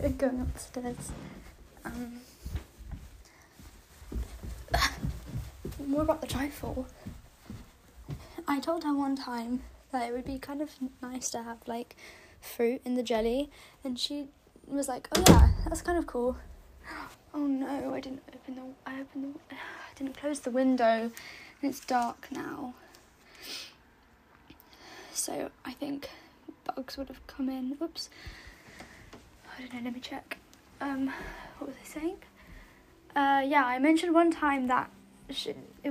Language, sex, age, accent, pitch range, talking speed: English, female, 10-29, British, 250-295 Hz, 135 wpm